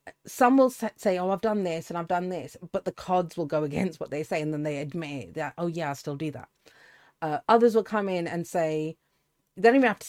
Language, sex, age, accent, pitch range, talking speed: English, female, 40-59, British, 155-205 Hz, 255 wpm